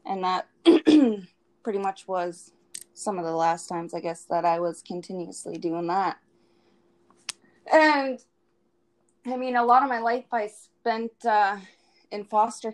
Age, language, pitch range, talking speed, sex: 20-39, English, 180-215 Hz, 145 wpm, female